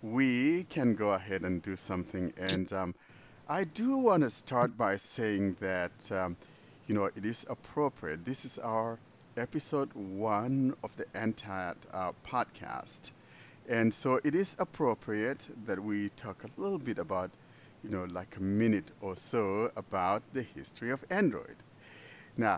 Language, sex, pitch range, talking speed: English, male, 100-135 Hz, 155 wpm